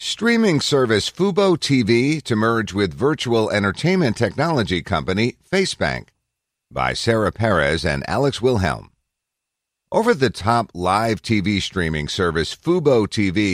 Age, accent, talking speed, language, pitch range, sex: 50-69, American, 120 wpm, English, 85-120 Hz, male